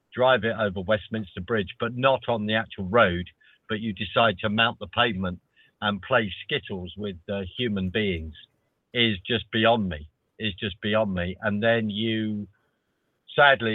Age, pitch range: 50-69, 95-115 Hz